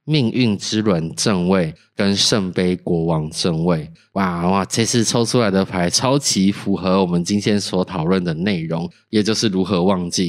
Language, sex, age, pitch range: Chinese, male, 20-39, 95-130 Hz